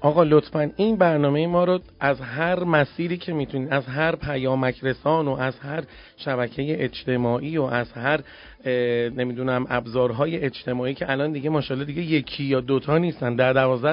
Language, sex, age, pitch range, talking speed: Persian, male, 40-59, 125-175 Hz, 165 wpm